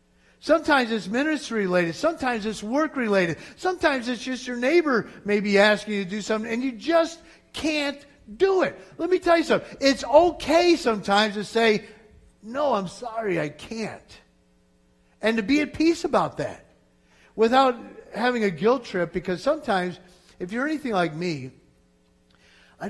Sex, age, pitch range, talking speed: male, 50-69, 135-225 Hz, 155 wpm